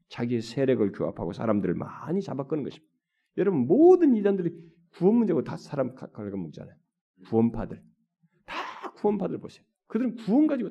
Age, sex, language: 40-59, male, Korean